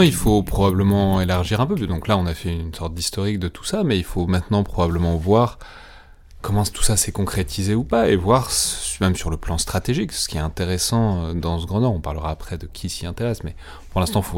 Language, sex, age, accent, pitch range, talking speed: French, male, 30-49, French, 85-105 Hz, 240 wpm